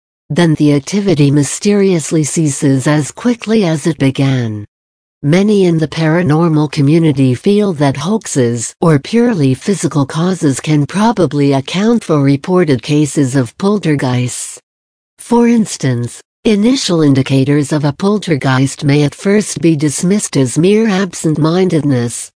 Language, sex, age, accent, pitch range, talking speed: English, female, 60-79, American, 135-185 Hz, 120 wpm